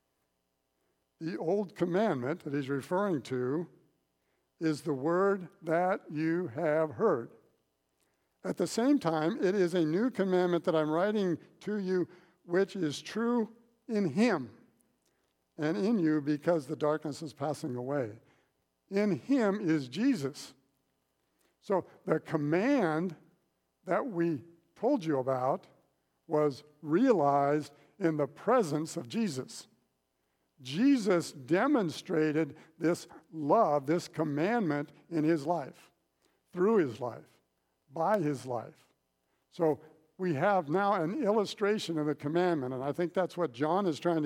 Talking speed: 125 wpm